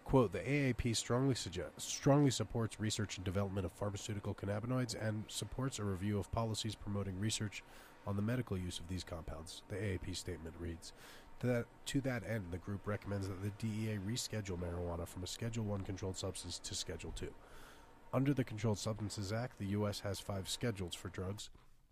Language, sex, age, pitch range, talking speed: English, male, 30-49, 95-110 Hz, 180 wpm